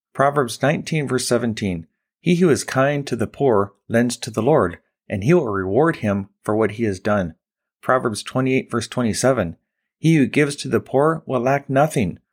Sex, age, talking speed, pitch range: male, 40-59, 185 wpm, 105-140 Hz